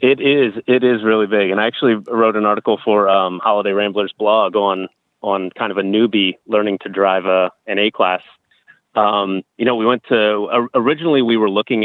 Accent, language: American, English